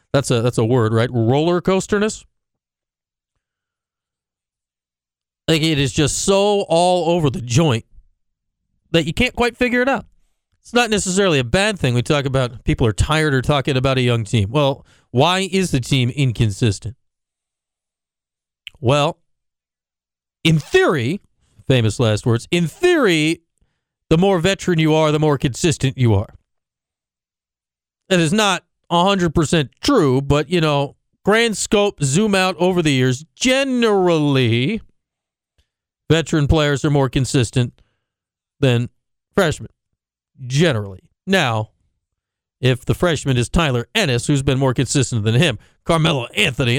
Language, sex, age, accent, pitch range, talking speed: English, male, 40-59, American, 115-170 Hz, 135 wpm